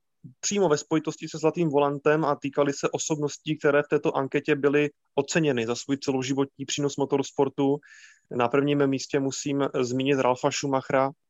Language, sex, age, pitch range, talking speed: Czech, male, 20-39, 130-150 Hz, 150 wpm